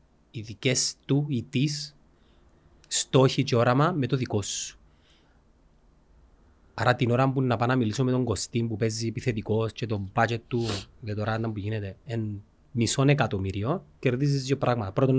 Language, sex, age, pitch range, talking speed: Greek, male, 30-49, 110-150 Hz, 155 wpm